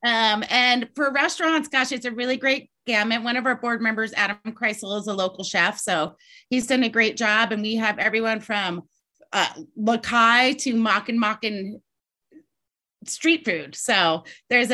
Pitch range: 200-250 Hz